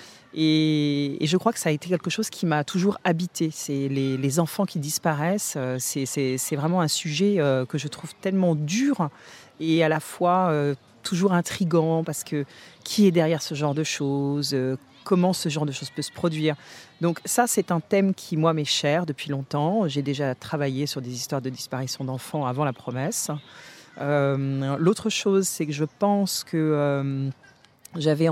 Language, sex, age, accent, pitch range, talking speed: French, female, 40-59, French, 145-180 Hz, 195 wpm